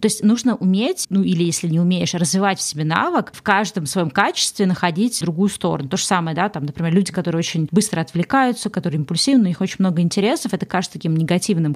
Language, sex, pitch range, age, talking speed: Russian, female, 170-205 Hz, 20-39, 210 wpm